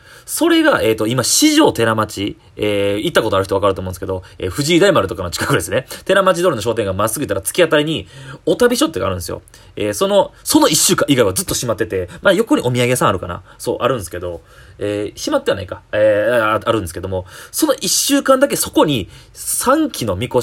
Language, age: Japanese, 30-49